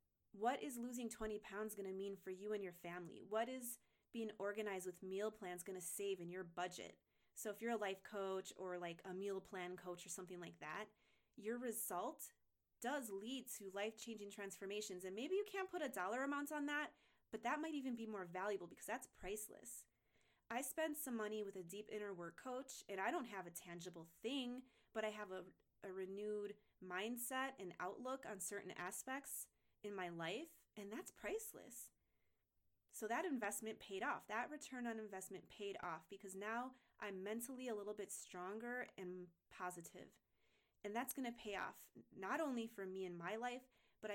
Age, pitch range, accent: 20-39, 190-245 Hz, American